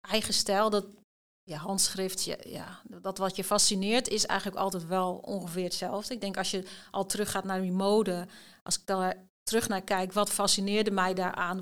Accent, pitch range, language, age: Dutch, 185-205 Hz, Dutch, 40-59